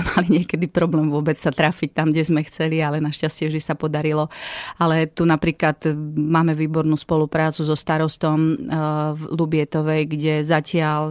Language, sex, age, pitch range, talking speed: Slovak, female, 30-49, 150-160 Hz, 145 wpm